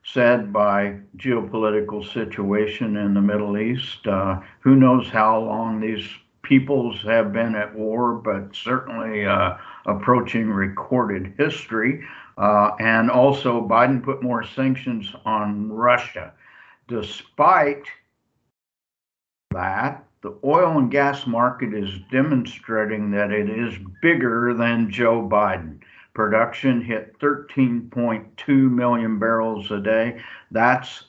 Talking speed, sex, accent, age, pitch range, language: 110 wpm, male, American, 60-79, 105-120 Hz, English